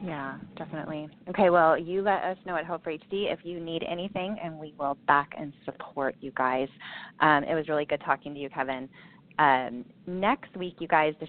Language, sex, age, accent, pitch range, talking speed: English, female, 20-39, American, 135-175 Hz, 205 wpm